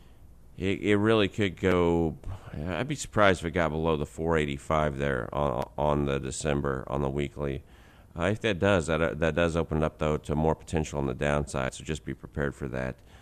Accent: American